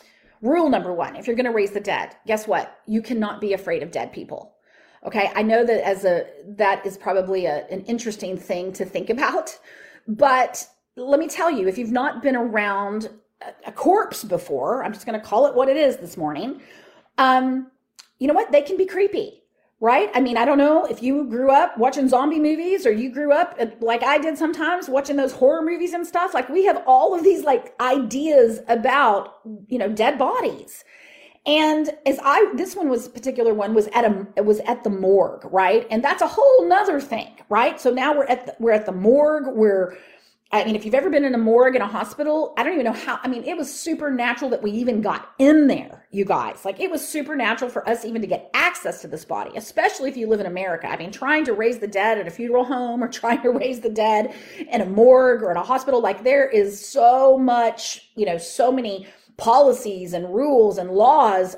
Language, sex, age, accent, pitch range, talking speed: English, female, 30-49, American, 210-290 Hz, 220 wpm